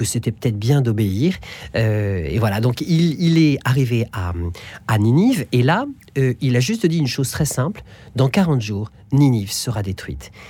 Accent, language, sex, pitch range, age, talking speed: French, French, male, 105-150 Hz, 40-59, 190 wpm